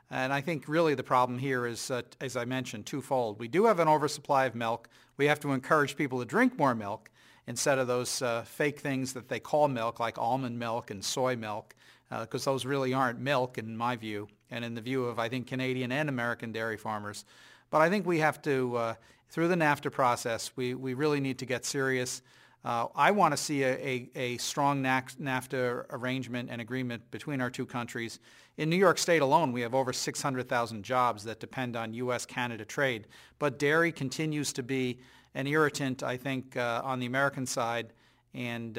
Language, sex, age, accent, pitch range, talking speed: English, male, 40-59, American, 120-140 Hz, 205 wpm